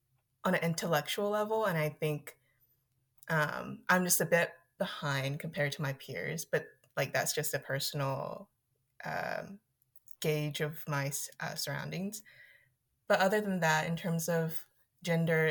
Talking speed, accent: 145 wpm, American